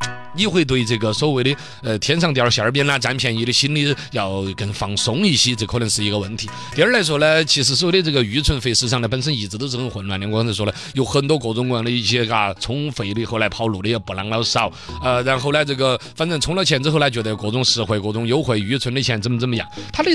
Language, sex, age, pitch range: Chinese, male, 30-49, 120-165 Hz